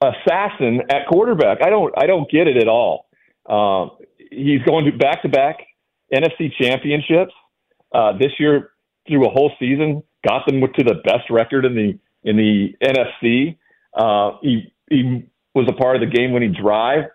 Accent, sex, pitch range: American, male, 115-150 Hz